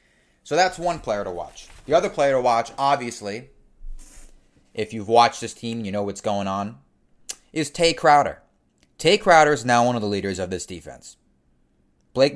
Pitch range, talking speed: 100-125 Hz, 180 wpm